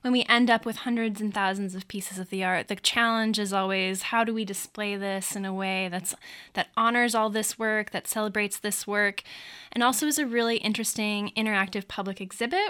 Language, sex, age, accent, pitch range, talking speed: English, female, 10-29, American, 200-240 Hz, 210 wpm